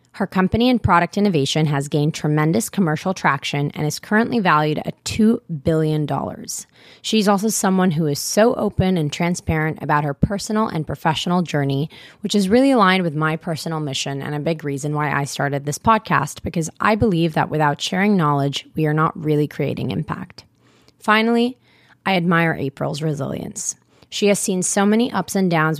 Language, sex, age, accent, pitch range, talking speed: English, female, 20-39, American, 150-195 Hz, 175 wpm